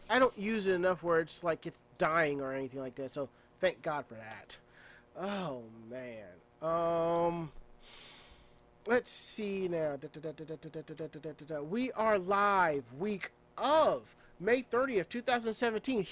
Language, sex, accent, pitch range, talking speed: English, male, American, 160-215 Hz, 125 wpm